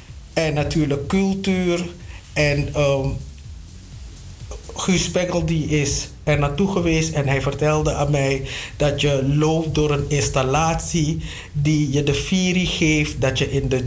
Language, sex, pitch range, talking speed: Dutch, male, 130-160 Hz, 140 wpm